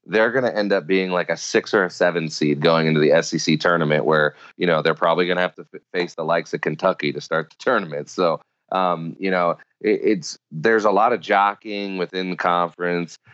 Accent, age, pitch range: American, 30-49, 80-95 Hz